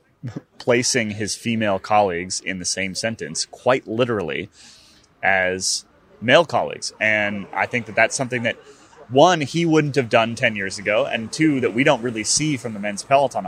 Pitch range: 105-130 Hz